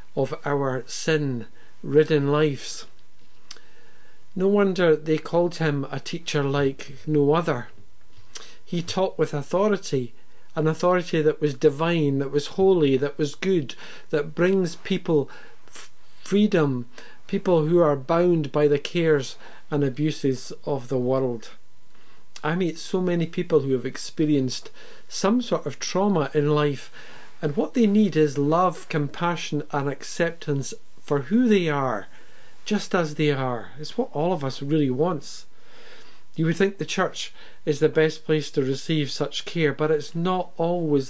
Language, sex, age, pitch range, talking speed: English, male, 50-69, 140-175 Hz, 145 wpm